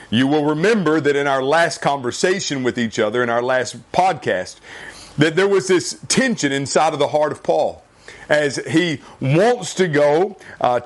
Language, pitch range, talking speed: English, 135-175 Hz, 175 wpm